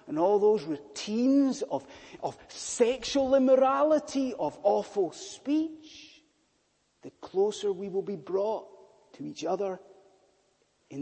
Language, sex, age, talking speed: English, male, 30-49, 115 wpm